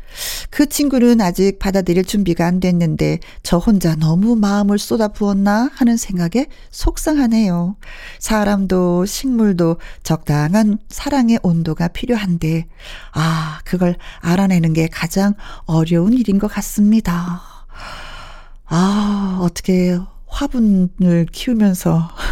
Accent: native